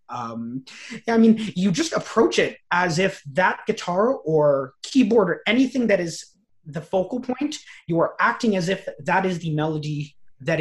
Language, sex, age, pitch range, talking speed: English, male, 30-49, 140-185 Hz, 170 wpm